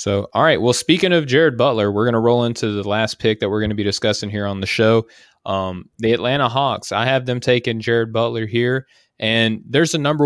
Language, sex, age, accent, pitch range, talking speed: English, male, 20-39, American, 105-120 Hz, 240 wpm